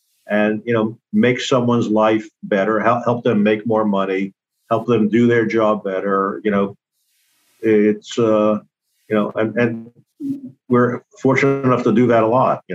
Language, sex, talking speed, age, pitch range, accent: English, male, 165 wpm, 50-69, 105-120 Hz, American